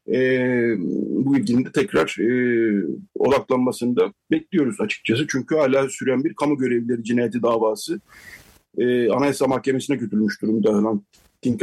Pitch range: 115-155 Hz